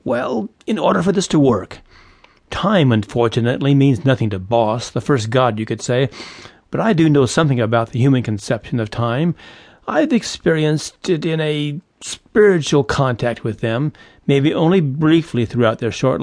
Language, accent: English, American